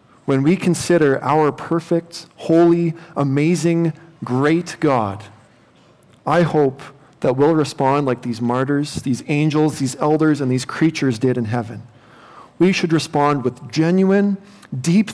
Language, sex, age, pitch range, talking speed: English, male, 40-59, 125-165 Hz, 130 wpm